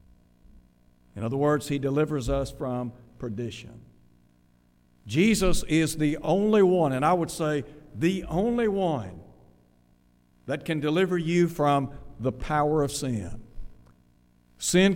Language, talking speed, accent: English, 120 wpm, American